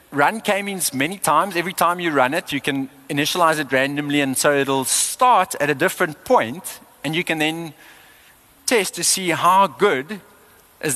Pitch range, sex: 130-170 Hz, male